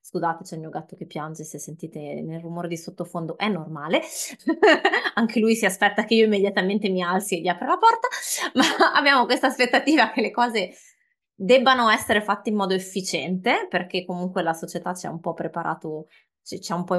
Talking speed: 195 wpm